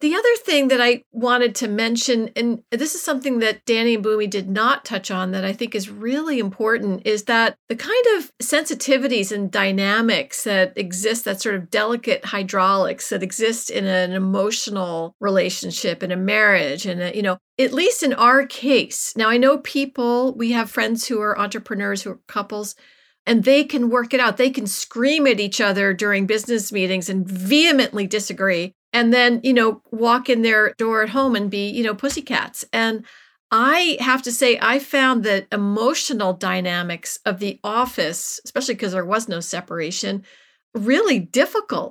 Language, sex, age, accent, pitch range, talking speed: English, female, 40-59, American, 200-260 Hz, 180 wpm